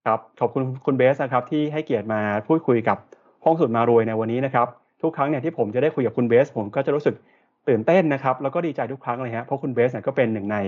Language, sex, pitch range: Thai, male, 115-145 Hz